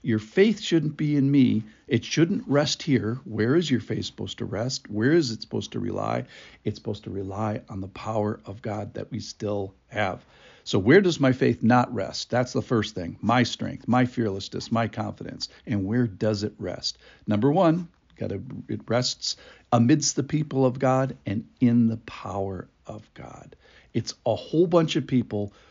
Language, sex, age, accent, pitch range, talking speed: English, male, 60-79, American, 105-135 Hz, 185 wpm